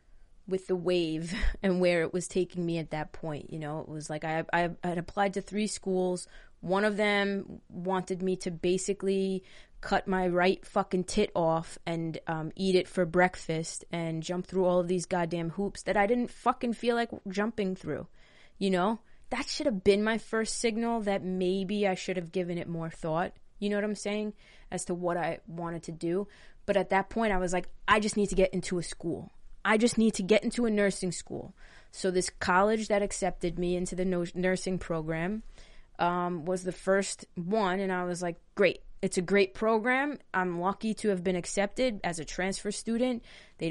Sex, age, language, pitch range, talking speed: female, 20-39, English, 175-205 Hz, 205 wpm